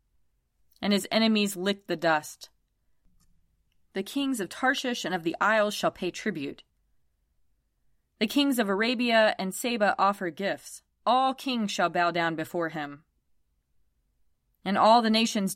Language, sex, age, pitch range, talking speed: English, female, 20-39, 160-225 Hz, 140 wpm